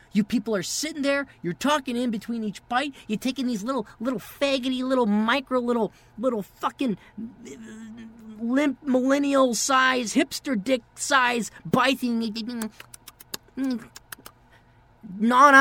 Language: English